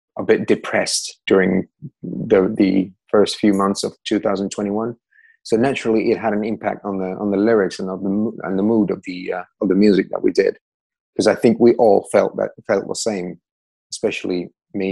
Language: English